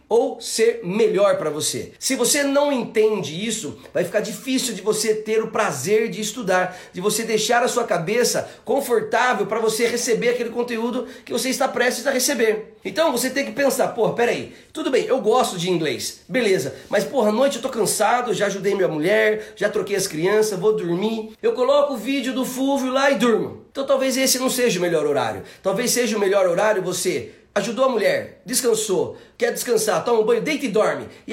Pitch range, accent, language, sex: 210-265 Hz, Brazilian, Portuguese, male